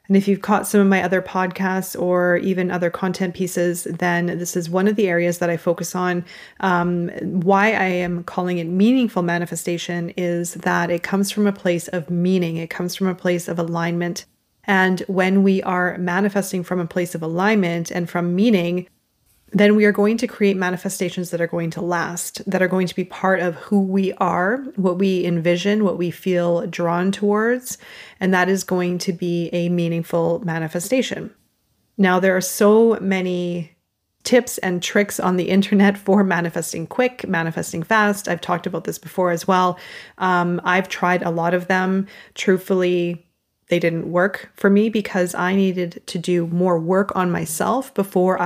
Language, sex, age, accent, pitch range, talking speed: English, female, 30-49, American, 175-195 Hz, 180 wpm